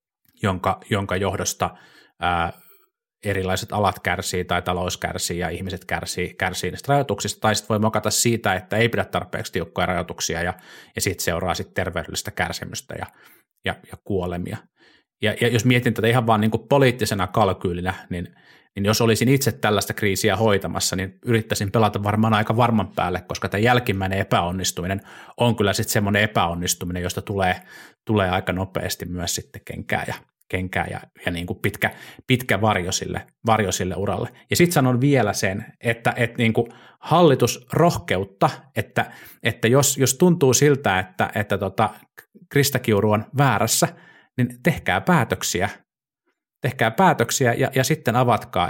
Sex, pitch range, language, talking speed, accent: male, 95-120 Hz, Finnish, 150 wpm, native